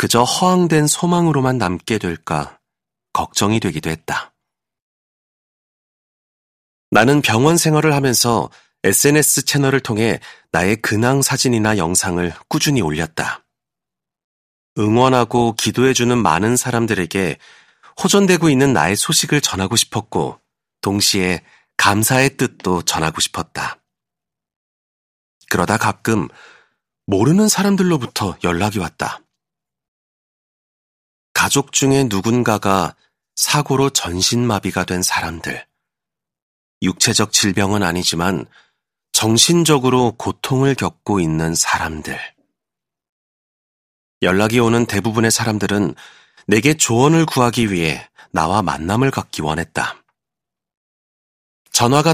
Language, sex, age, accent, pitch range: Korean, male, 40-59, native, 95-135 Hz